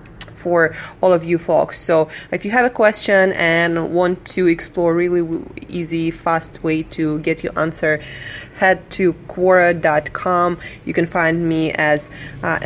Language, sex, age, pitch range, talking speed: English, female, 20-39, 165-205 Hz, 155 wpm